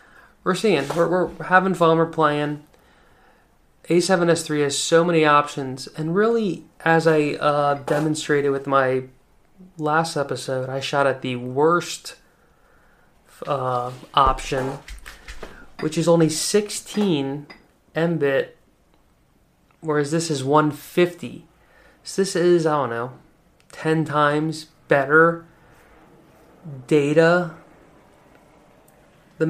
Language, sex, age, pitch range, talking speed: English, male, 20-39, 135-165 Hz, 105 wpm